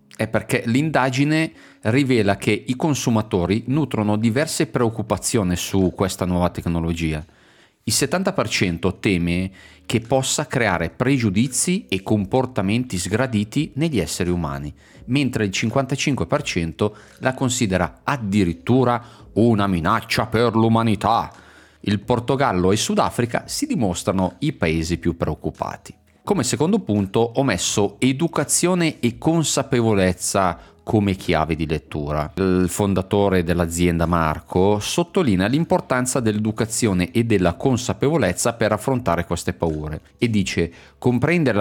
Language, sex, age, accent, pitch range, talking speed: Italian, male, 40-59, native, 90-130 Hz, 110 wpm